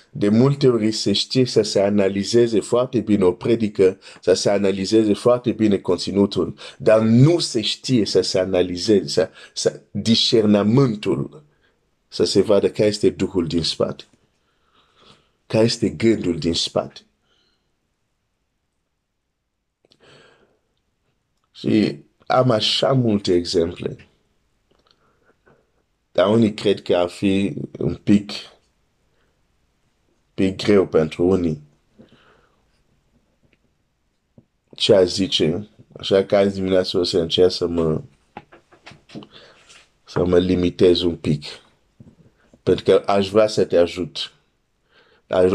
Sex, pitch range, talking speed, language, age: male, 90-110 Hz, 110 wpm, Romanian, 50-69